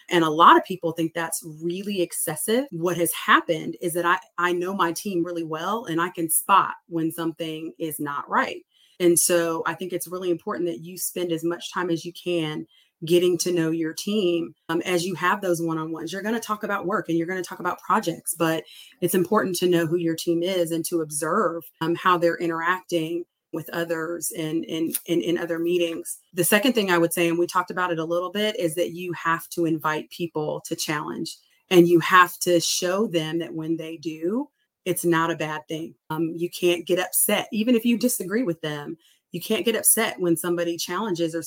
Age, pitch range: 30-49, 165-185 Hz